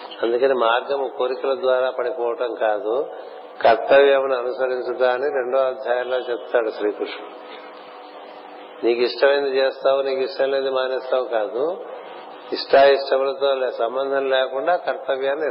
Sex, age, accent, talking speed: male, 50-69, native, 90 wpm